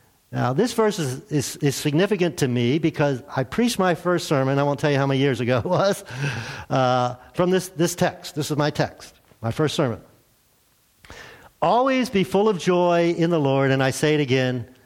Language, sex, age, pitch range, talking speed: English, male, 50-69, 135-195 Hz, 200 wpm